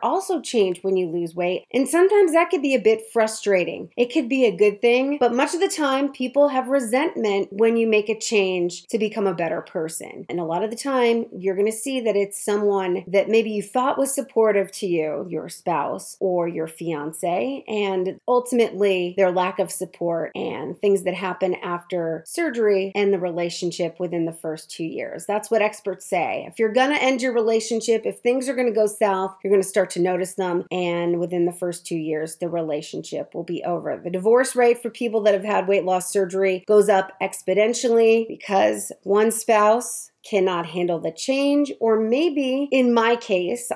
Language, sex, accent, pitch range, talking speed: English, female, American, 180-230 Hz, 200 wpm